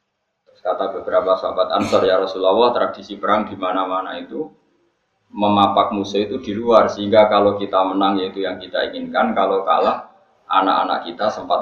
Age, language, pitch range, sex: 20-39, Indonesian, 95-120 Hz, male